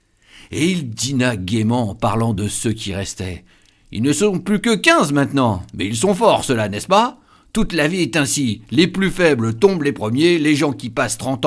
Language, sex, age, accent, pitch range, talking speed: French, male, 60-79, French, 110-140 Hz, 210 wpm